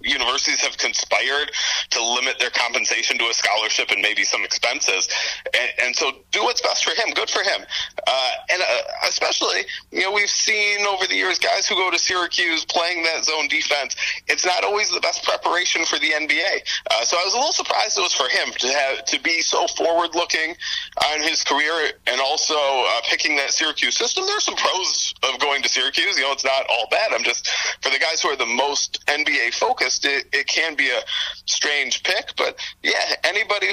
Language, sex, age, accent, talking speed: English, male, 30-49, American, 205 wpm